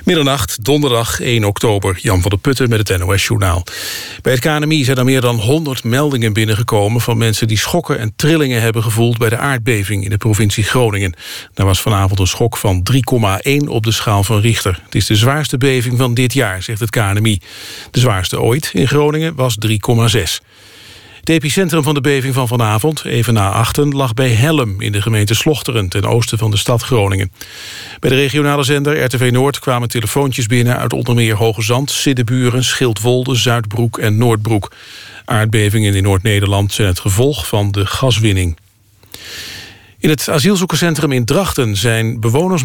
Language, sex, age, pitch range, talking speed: Dutch, male, 50-69, 105-135 Hz, 175 wpm